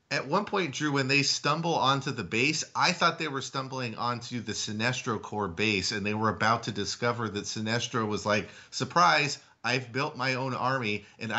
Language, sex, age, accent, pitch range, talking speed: English, male, 30-49, American, 100-130 Hz, 195 wpm